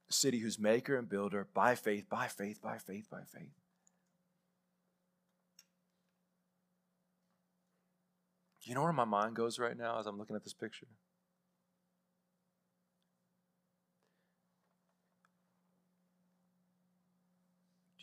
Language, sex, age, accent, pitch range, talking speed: English, male, 40-59, American, 140-180 Hz, 95 wpm